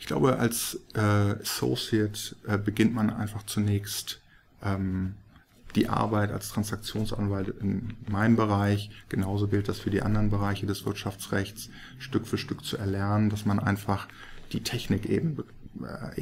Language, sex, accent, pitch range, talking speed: German, male, German, 100-110 Hz, 145 wpm